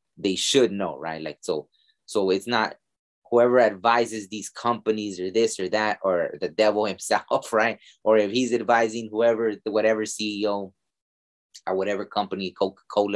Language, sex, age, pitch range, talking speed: English, male, 20-39, 90-110 Hz, 155 wpm